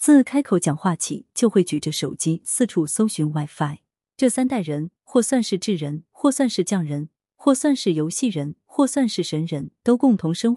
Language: Chinese